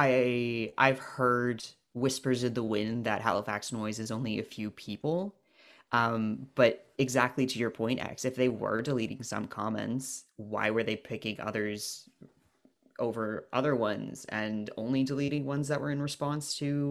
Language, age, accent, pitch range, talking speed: English, 20-39, American, 105-130 Hz, 160 wpm